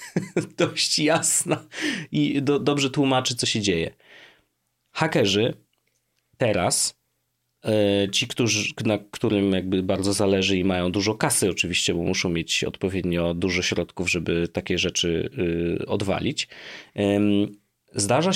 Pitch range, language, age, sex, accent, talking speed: 95-130 Hz, Polish, 30-49, male, native, 110 wpm